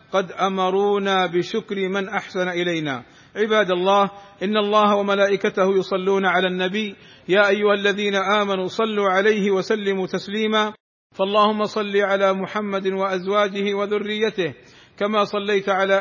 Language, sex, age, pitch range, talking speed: Arabic, male, 50-69, 190-210 Hz, 115 wpm